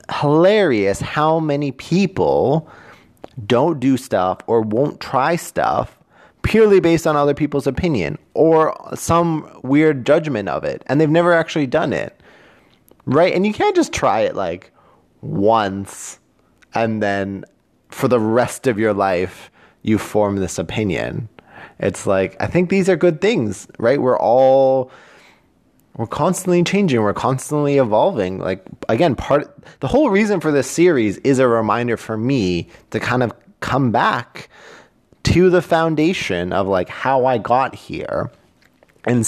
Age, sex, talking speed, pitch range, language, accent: 20-39, male, 145 wpm, 110-165 Hz, English, American